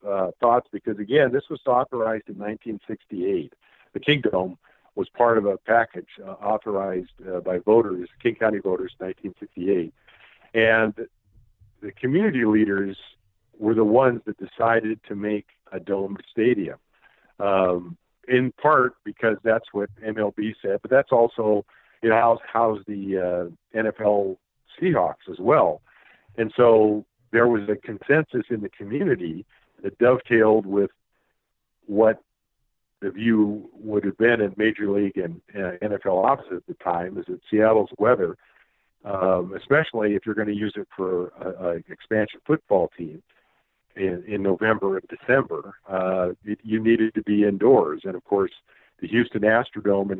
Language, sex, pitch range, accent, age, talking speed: English, male, 95-110 Hz, American, 50-69, 145 wpm